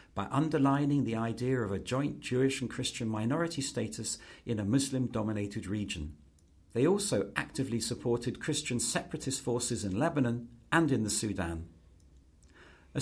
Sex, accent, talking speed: male, British, 140 wpm